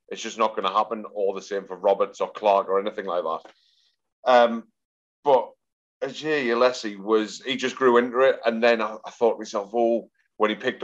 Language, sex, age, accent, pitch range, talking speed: English, male, 30-49, British, 100-115 Hz, 215 wpm